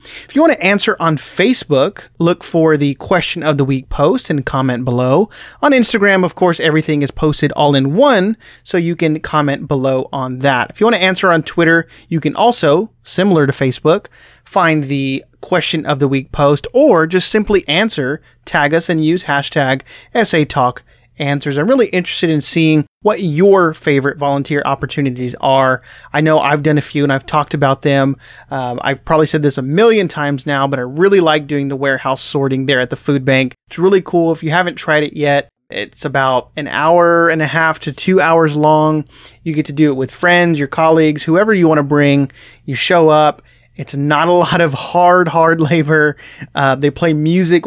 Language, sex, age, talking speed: English, male, 30-49, 200 wpm